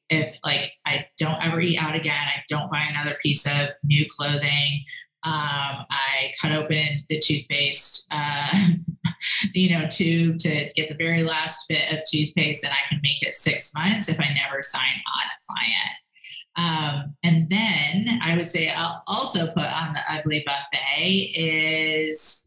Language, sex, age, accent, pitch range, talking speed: English, female, 30-49, American, 140-165 Hz, 165 wpm